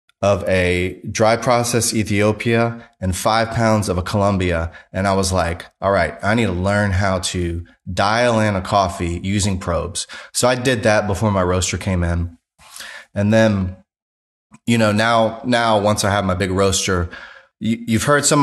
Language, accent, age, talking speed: English, American, 20-39, 175 wpm